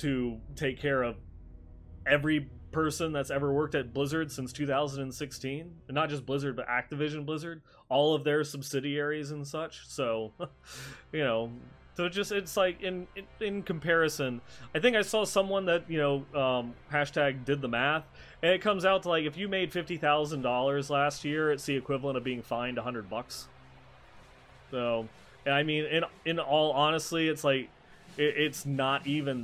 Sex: male